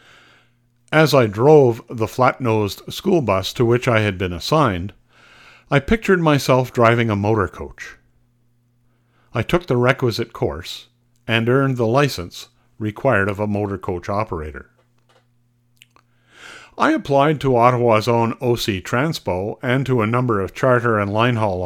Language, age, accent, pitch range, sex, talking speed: English, 60-79, American, 110-135 Hz, male, 140 wpm